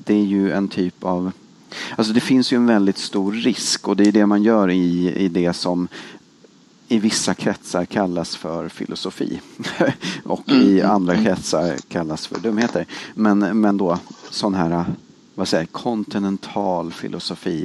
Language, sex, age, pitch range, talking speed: English, male, 40-59, 90-110 Hz, 155 wpm